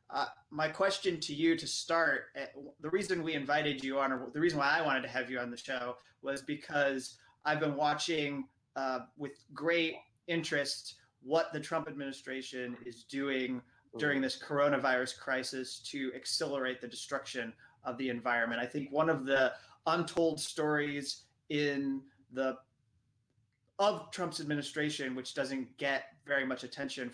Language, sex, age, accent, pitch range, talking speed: English, male, 30-49, American, 125-150 Hz, 155 wpm